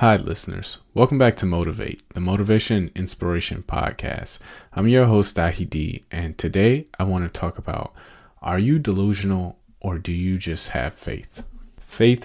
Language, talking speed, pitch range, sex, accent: English, 155 wpm, 90-105 Hz, male, American